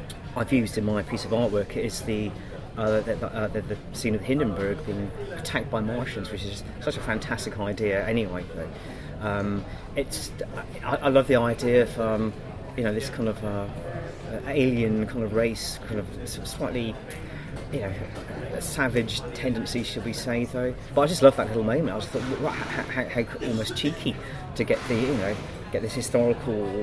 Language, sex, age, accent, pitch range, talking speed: English, male, 30-49, British, 100-120 Hz, 185 wpm